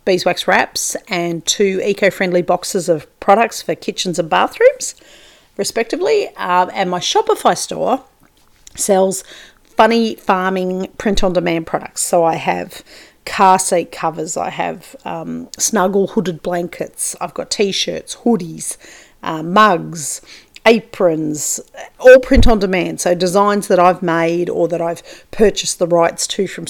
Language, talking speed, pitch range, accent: English, 135 wpm, 170-220 Hz, Australian